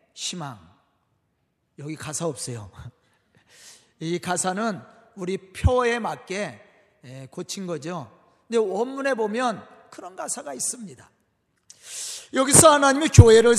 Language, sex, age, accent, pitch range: Korean, male, 40-59, native, 190-270 Hz